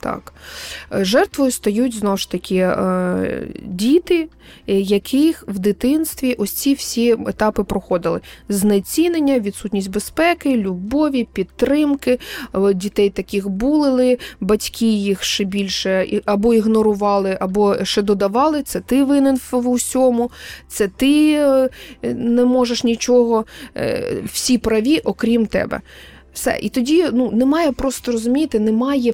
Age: 20-39